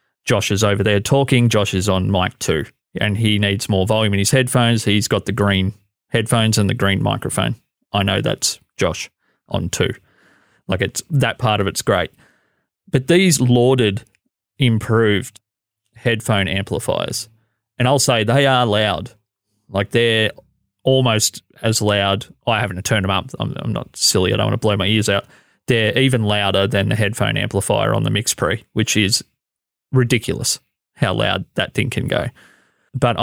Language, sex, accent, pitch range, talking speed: English, male, Australian, 100-125 Hz, 175 wpm